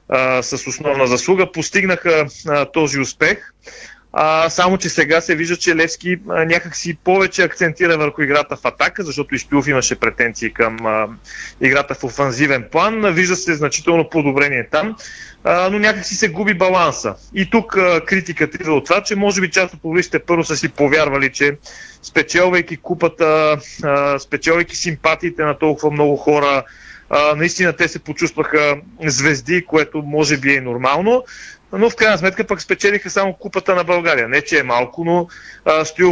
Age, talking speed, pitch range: 30-49, 165 wpm, 145-180 Hz